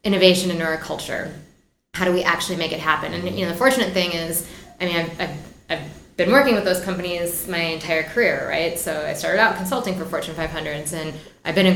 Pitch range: 155-185 Hz